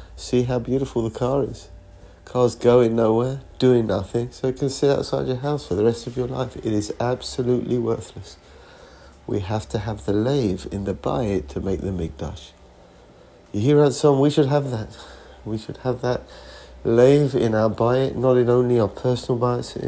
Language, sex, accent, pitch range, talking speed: English, male, British, 90-120 Hz, 190 wpm